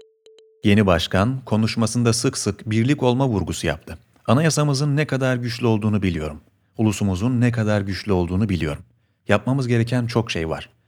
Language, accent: Turkish, native